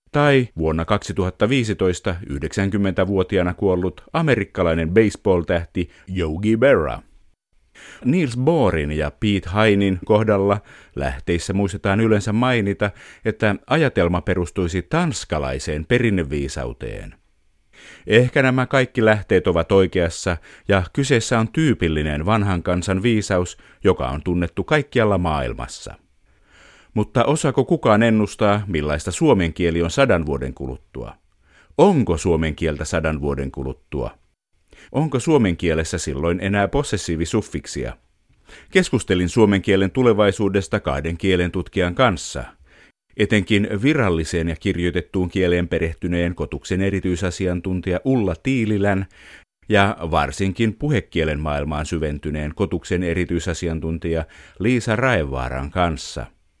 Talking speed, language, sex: 100 wpm, Finnish, male